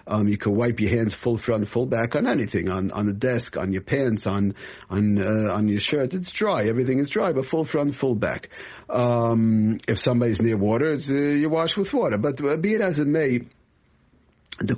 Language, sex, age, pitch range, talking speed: English, male, 50-69, 110-140 Hz, 215 wpm